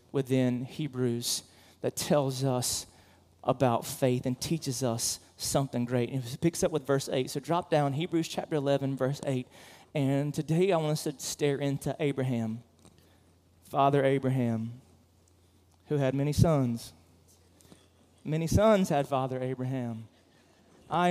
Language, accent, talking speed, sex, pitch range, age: English, American, 135 wpm, male, 120-165 Hz, 30-49